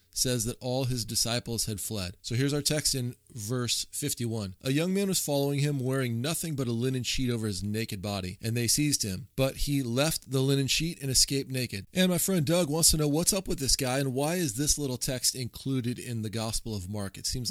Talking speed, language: 235 wpm, English